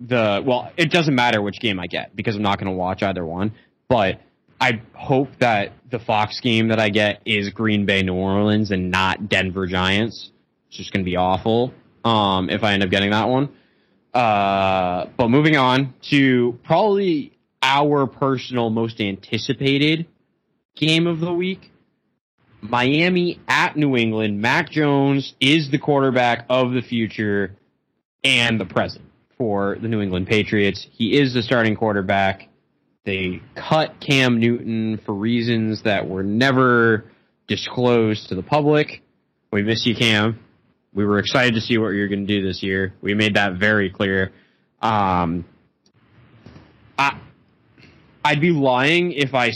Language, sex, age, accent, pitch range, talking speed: English, male, 20-39, American, 100-135 Hz, 155 wpm